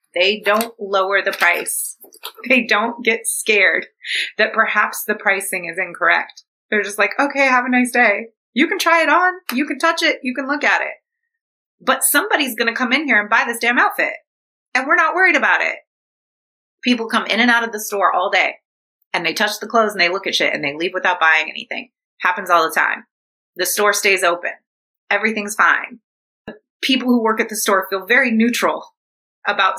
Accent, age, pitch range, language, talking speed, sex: American, 30-49, 185-260 Hz, English, 205 wpm, female